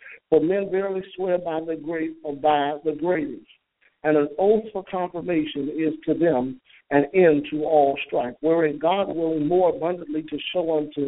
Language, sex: English, male